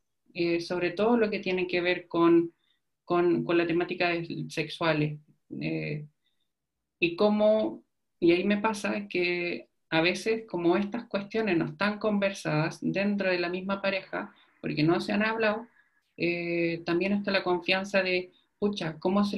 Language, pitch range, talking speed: Spanish, 170-200 Hz, 150 wpm